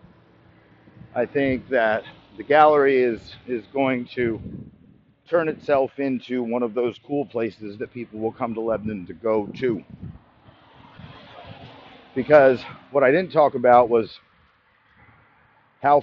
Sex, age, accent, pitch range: male, 50-69, American, 120-165 Hz